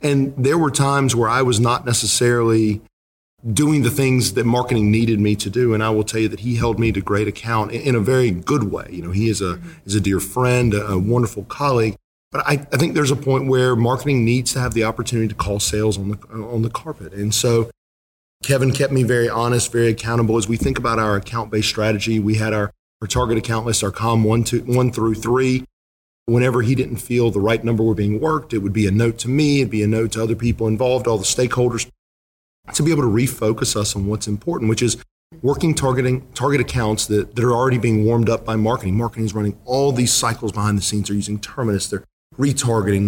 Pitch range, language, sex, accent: 105-125 Hz, English, male, American